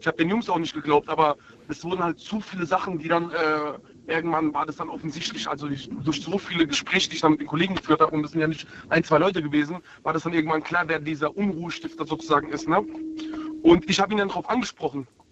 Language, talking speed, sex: German, 245 wpm, male